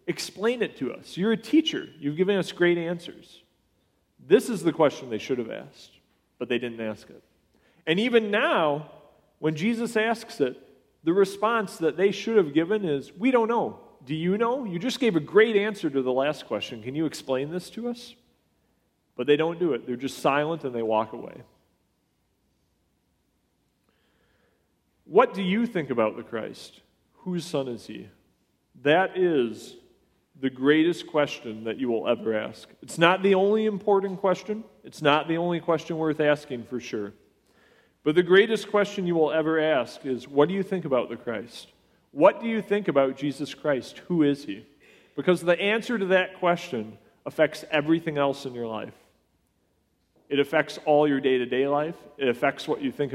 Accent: American